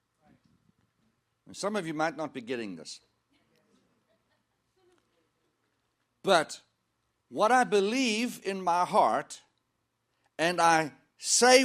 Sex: male